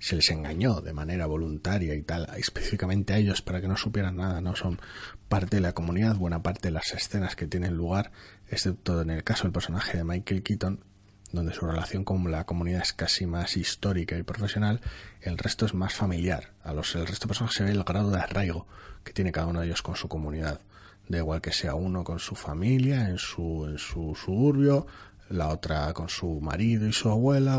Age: 30-49